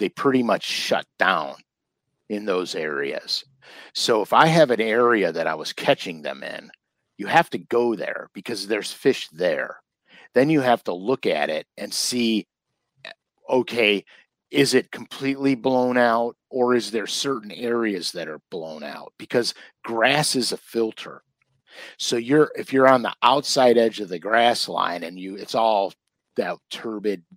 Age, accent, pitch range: 50-69, American, 110-135 Hz